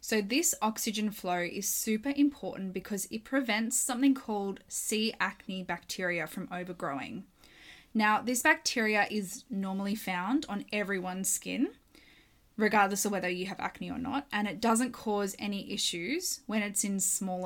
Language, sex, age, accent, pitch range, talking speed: English, female, 10-29, Australian, 190-245 Hz, 150 wpm